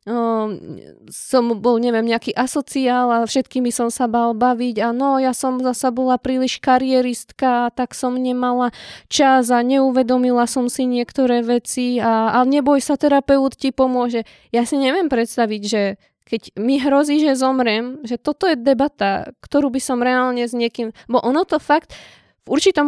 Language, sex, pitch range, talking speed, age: Slovak, female, 220-270 Hz, 165 wpm, 20-39